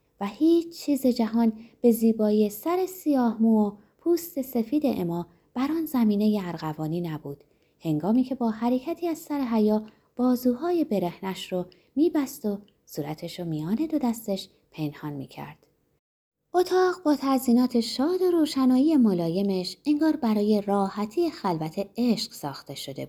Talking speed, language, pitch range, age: 130 wpm, Persian, 180-270 Hz, 20-39